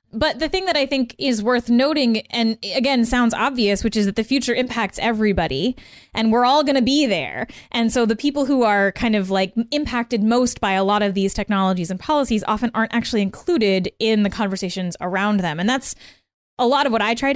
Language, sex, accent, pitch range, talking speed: English, female, American, 200-250 Hz, 220 wpm